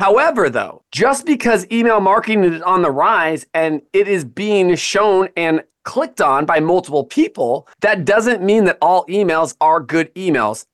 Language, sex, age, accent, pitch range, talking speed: English, male, 30-49, American, 150-195 Hz, 170 wpm